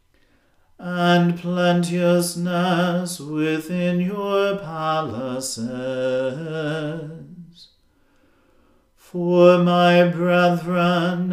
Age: 40-59